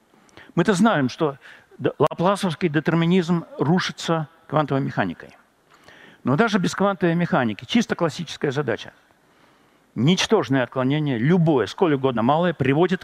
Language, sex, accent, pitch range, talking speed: Russian, male, native, 135-195 Hz, 105 wpm